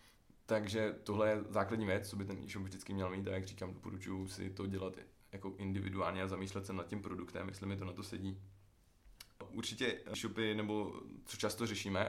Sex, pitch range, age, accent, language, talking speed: male, 95-105 Hz, 20-39, native, Czech, 195 wpm